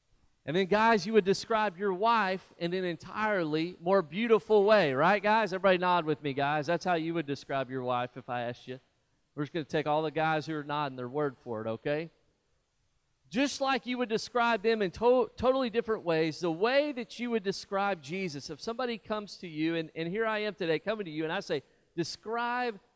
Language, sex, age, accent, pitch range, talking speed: English, male, 40-59, American, 150-220 Hz, 215 wpm